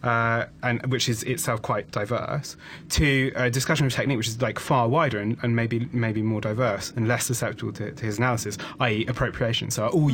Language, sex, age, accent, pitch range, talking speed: English, male, 30-49, British, 115-135 Hz, 215 wpm